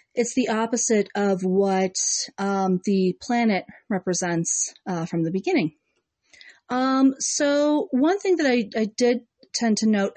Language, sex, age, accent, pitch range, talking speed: English, female, 40-59, American, 190-240 Hz, 140 wpm